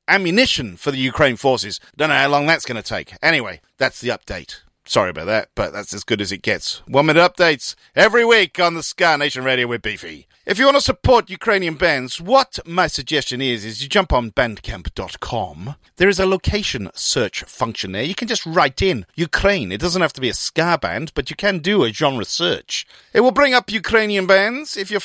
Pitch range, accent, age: 130-200 Hz, British, 40-59